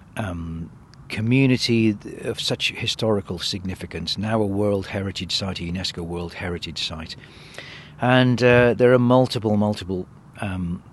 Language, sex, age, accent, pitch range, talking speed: English, male, 40-59, British, 95-110 Hz, 125 wpm